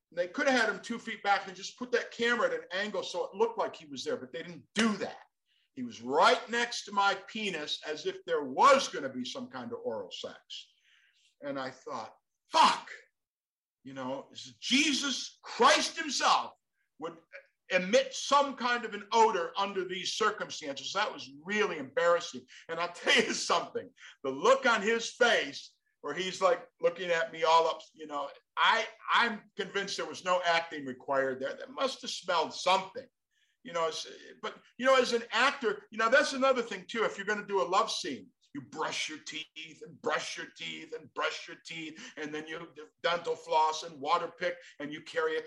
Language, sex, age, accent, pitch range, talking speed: English, male, 50-69, American, 165-270 Hz, 195 wpm